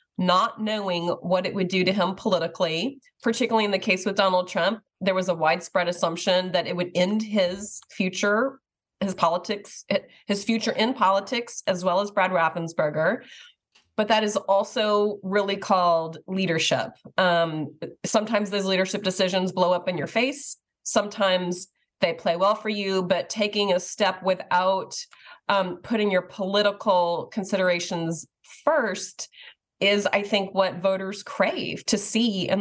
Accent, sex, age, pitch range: American, female, 30-49, 185-215 Hz